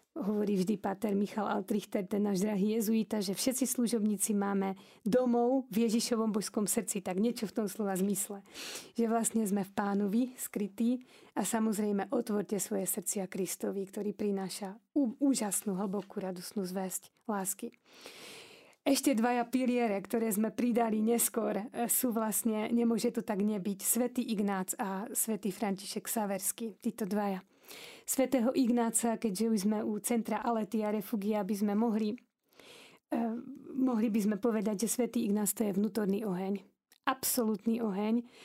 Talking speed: 140 wpm